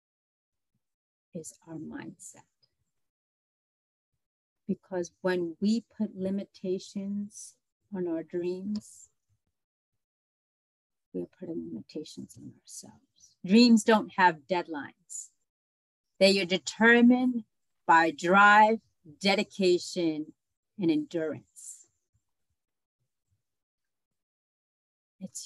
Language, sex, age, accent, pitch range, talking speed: English, female, 40-59, American, 130-205 Hz, 70 wpm